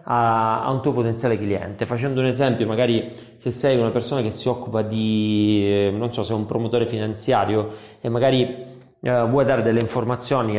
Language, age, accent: Italian, 30-49, native